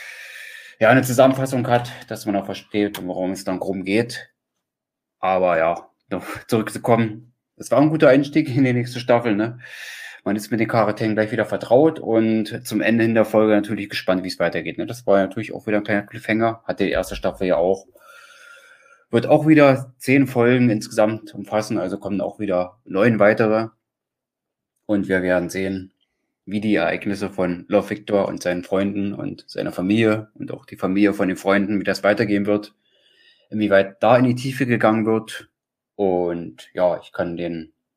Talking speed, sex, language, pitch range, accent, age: 180 wpm, male, German, 95-120 Hz, German, 30-49